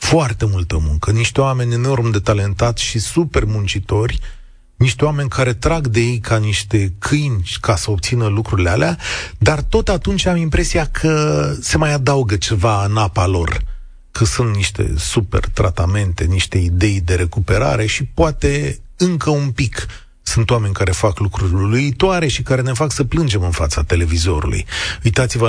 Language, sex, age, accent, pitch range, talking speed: Romanian, male, 30-49, native, 100-130 Hz, 160 wpm